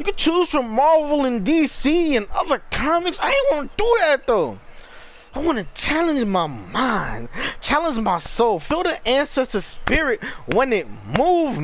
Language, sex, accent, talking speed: English, male, American, 160 wpm